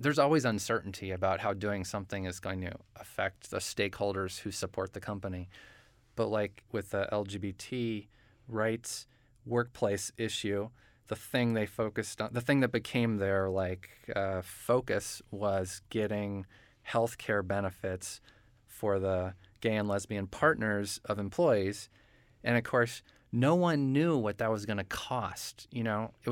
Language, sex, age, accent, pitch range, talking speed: English, male, 20-39, American, 100-120 Hz, 150 wpm